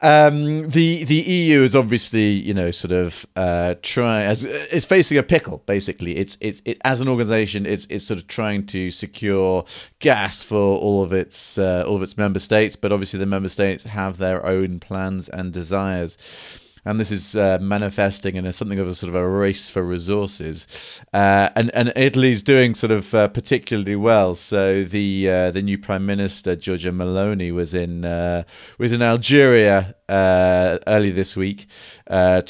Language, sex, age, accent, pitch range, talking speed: English, male, 30-49, British, 95-115 Hz, 175 wpm